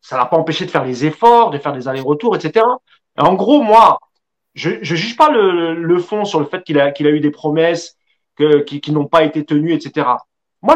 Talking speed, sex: 240 wpm, male